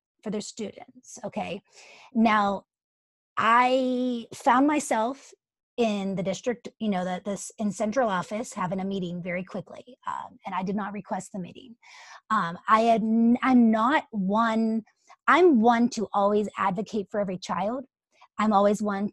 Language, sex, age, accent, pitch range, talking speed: English, female, 30-49, American, 185-230 Hz, 150 wpm